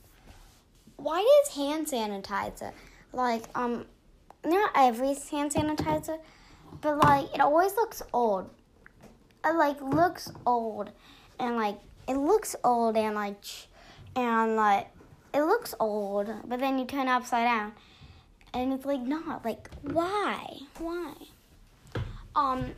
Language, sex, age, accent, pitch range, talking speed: English, female, 10-29, American, 220-285 Hz, 125 wpm